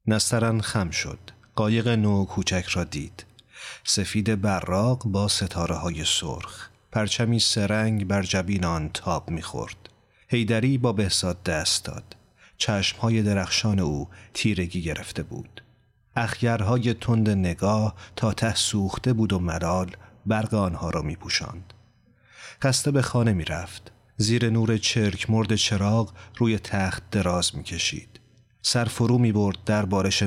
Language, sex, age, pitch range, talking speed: Persian, male, 40-59, 95-115 Hz, 130 wpm